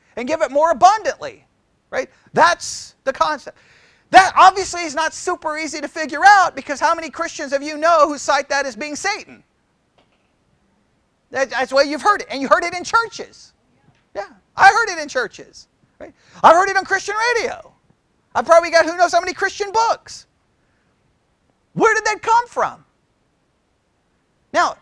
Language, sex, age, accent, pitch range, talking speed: English, male, 40-59, American, 300-390 Hz, 170 wpm